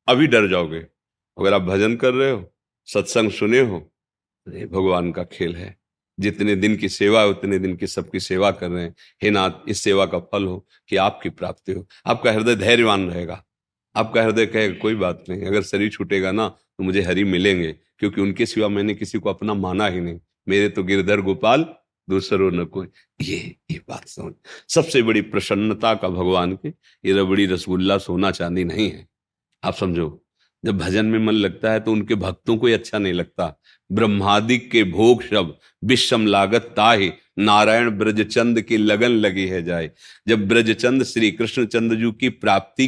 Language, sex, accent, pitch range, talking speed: Hindi, male, native, 95-115 Hz, 180 wpm